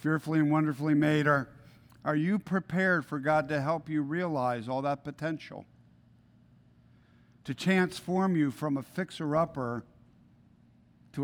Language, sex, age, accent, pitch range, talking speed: English, male, 50-69, American, 120-155 Hz, 125 wpm